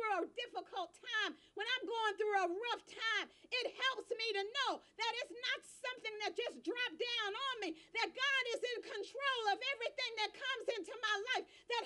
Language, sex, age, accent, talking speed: English, female, 40-59, American, 190 wpm